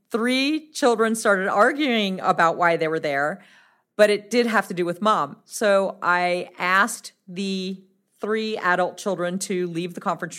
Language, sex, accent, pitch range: English, female, American, 175-215 Hz